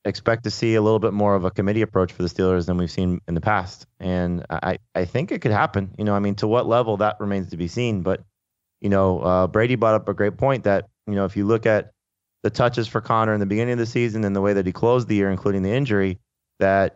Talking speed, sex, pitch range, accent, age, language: 275 wpm, male, 95-115 Hz, American, 30-49, English